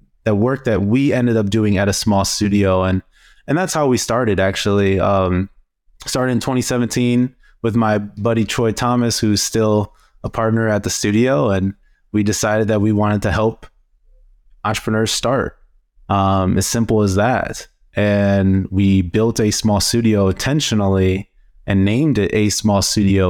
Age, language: 20-39, English